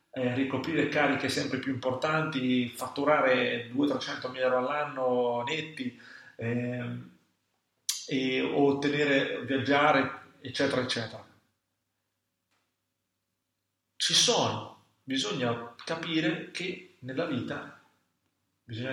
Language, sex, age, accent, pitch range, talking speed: Italian, male, 40-59, native, 120-145 Hz, 80 wpm